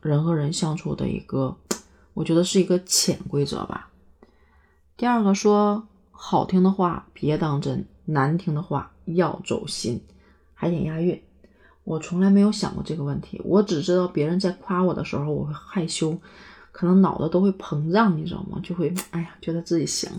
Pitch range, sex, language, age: 170-215 Hz, female, Chinese, 30-49